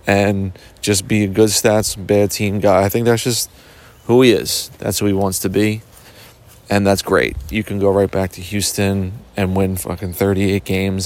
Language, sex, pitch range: English, male, 95-120 Hz